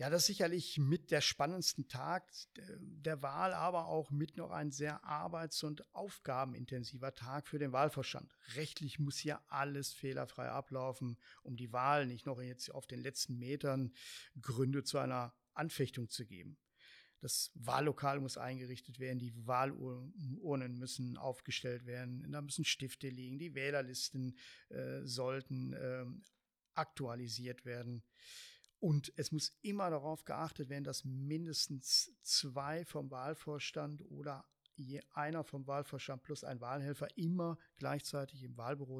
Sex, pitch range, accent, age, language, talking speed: male, 130-155 Hz, German, 50-69, German, 140 wpm